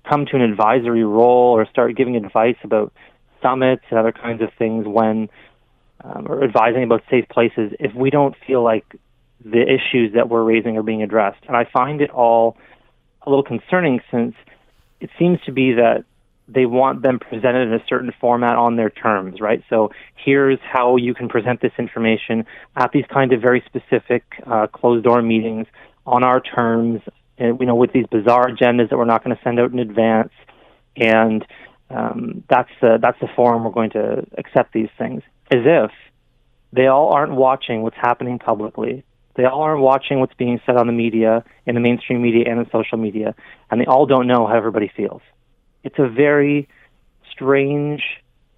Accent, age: American, 30-49